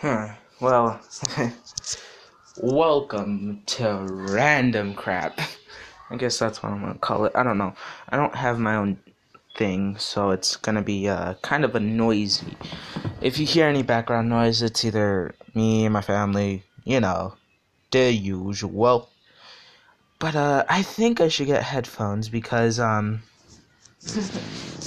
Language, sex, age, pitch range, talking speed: English, male, 20-39, 100-125 Hz, 140 wpm